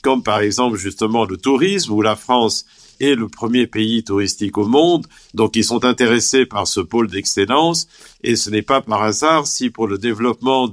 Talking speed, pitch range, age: 190 wpm, 105-130 Hz, 50-69